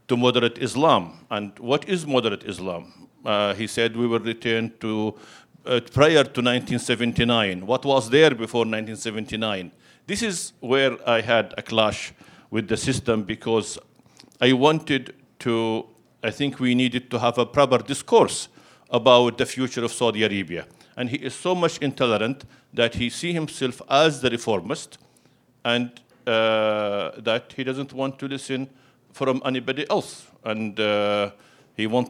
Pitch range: 110-135 Hz